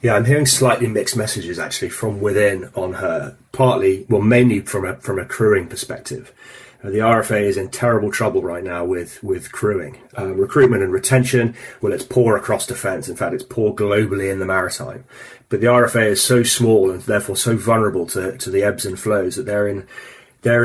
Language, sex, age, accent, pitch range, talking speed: English, male, 30-49, British, 105-125 Hz, 200 wpm